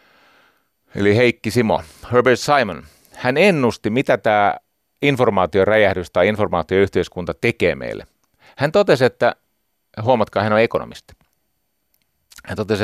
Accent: native